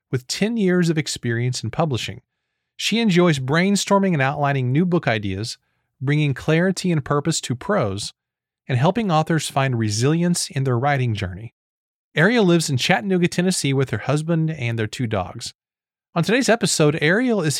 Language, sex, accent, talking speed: English, male, American, 160 wpm